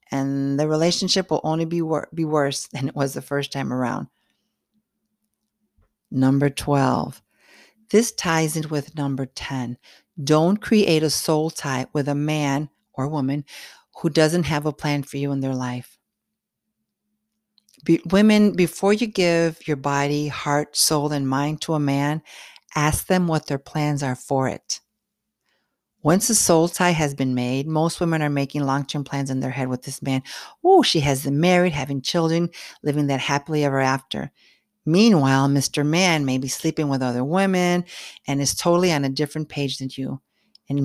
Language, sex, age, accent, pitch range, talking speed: English, female, 50-69, American, 140-175 Hz, 170 wpm